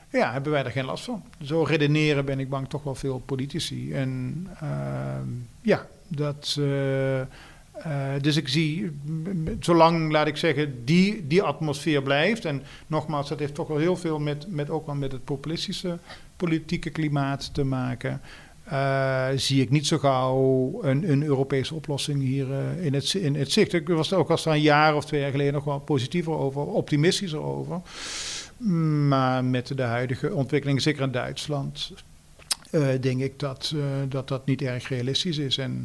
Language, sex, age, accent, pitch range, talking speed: Dutch, male, 50-69, Dutch, 135-155 Hz, 180 wpm